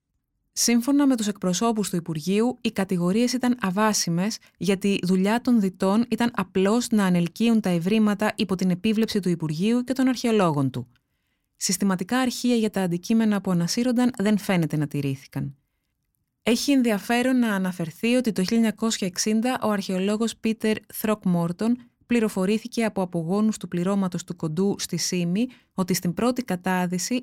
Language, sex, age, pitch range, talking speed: Greek, female, 20-39, 180-225 Hz, 145 wpm